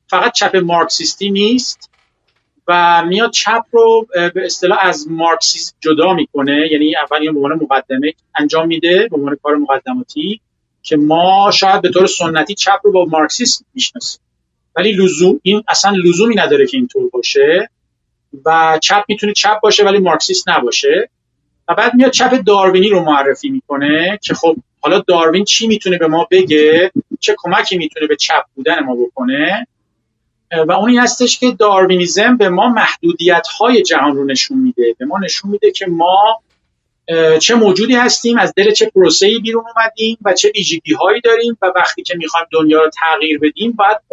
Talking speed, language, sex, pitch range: 160 wpm, Persian, male, 165-235 Hz